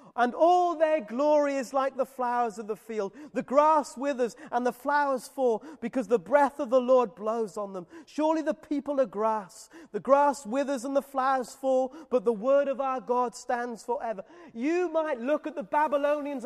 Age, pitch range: 30-49, 220-290 Hz